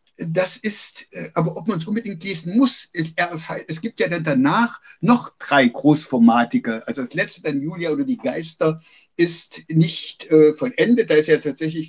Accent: German